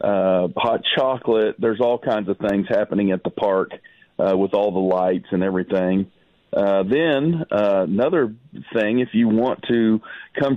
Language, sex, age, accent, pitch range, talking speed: English, male, 40-59, American, 100-130 Hz, 165 wpm